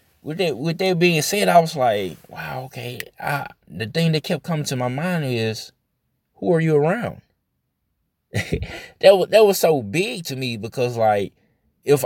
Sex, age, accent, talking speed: male, 20-39, American, 165 wpm